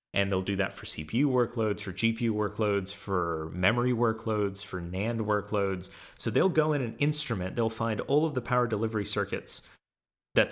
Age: 30-49